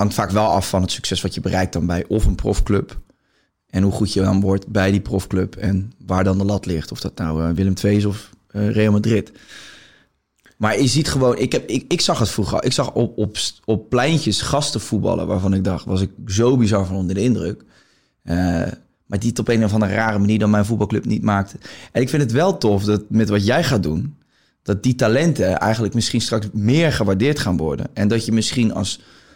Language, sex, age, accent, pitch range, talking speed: Dutch, male, 20-39, Dutch, 95-115 Hz, 230 wpm